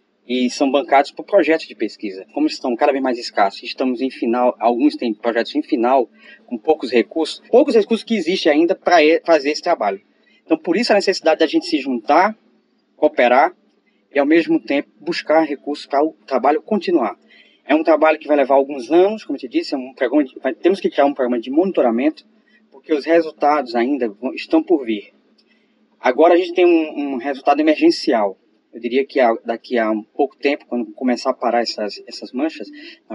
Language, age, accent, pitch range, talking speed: Portuguese, 20-39, Brazilian, 125-185 Hz, 185 wpm